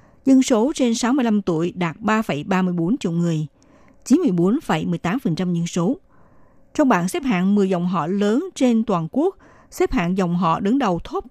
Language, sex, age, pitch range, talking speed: Vietnamese, female, 60-79, 175-235 Hz, 160 wpm